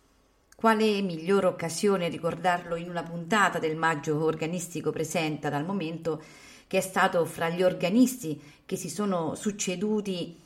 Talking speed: 130 wpm